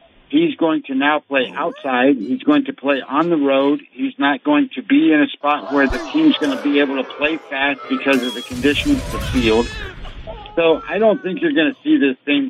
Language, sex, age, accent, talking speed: English, male, 60-79, American, 230 wpm